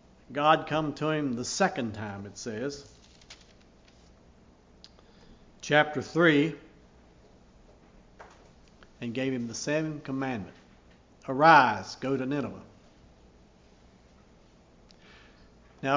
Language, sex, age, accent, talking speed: English, male, 50-69, American, 85 wpm